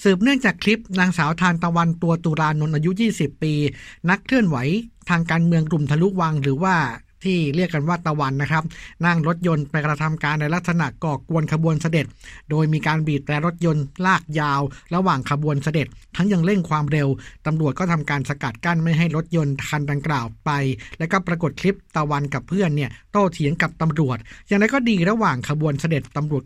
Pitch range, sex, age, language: 145-175 Hz, male, 60-79, Thai